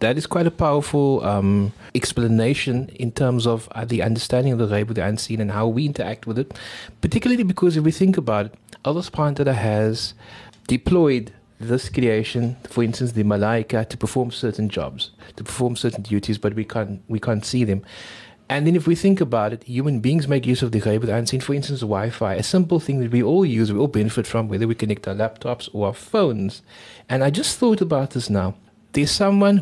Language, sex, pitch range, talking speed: English, male, 115-145 Hz, 210 wpm